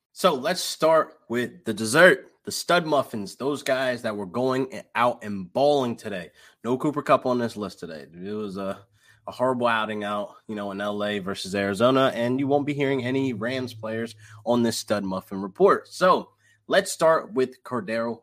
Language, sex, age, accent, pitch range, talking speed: English, male, 20-39, American, 105-140 Hz, 185 wpm